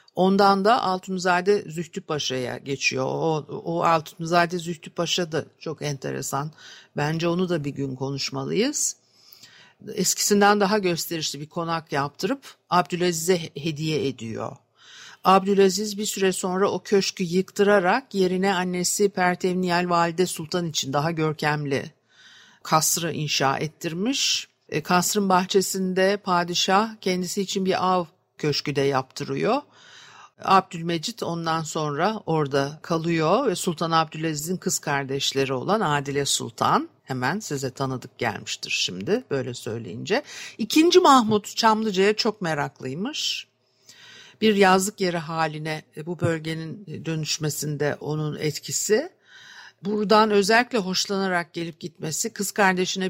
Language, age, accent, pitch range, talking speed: Turkish, 60-79, native, 155-195 Hz, 110 wpm